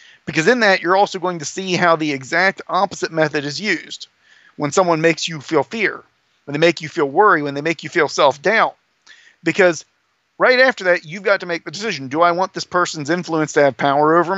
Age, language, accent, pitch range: 40-59, English, American, 150-190 Hz